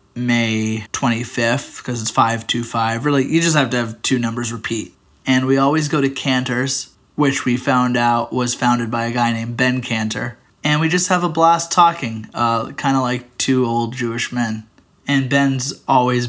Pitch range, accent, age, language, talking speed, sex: 115-135 Hz, American, 20-39, English, 180 wpm, male